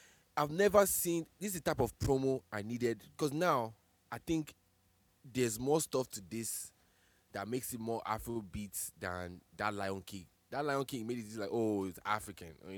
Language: English